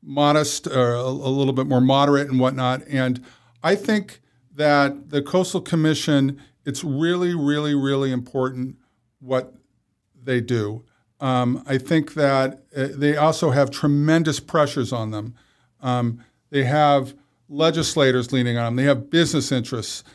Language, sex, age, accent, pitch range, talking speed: English, male, 50-69, American, 130-150 Hz, 135 wpm